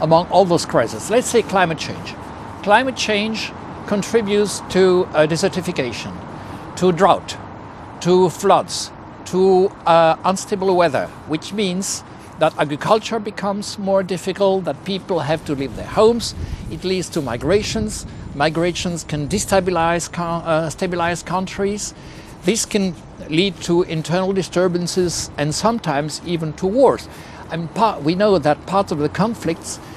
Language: English